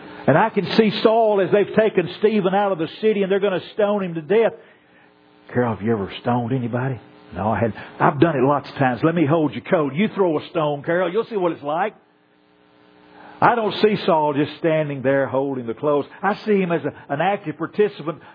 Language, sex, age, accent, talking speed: English, male, 50-69, American, 215 wpm